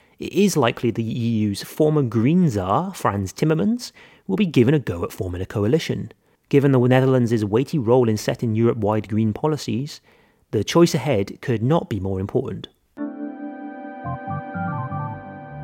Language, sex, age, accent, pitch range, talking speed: English, male, 30-49, British, 110-160 Hz, 140 wpm